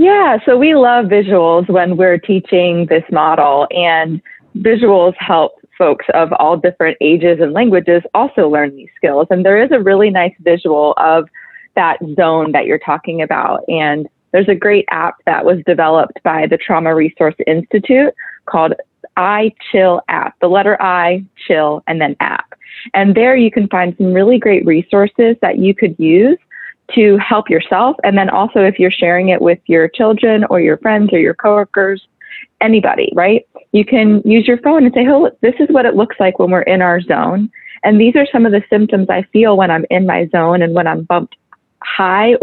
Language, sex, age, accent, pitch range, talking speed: English, female, 20-39, American, 170-215 Hz, 190 wpm